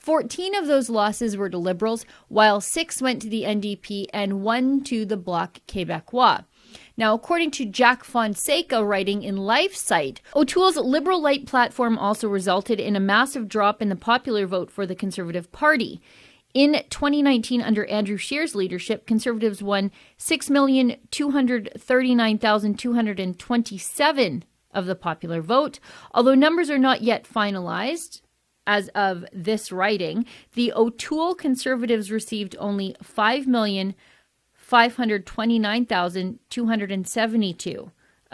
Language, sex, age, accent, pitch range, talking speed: English, female, 40-59, American, 200-255 Hz, 115 wpm